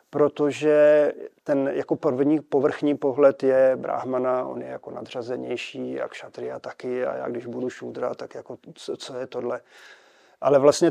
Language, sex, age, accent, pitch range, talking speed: Czech, male, 40-59, native, 130-155 Hz, 155 wpm